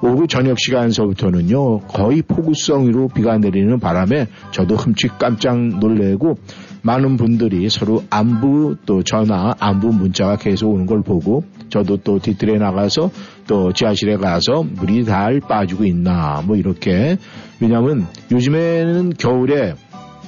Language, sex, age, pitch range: Korean, male, 50-69, 100-130 Hz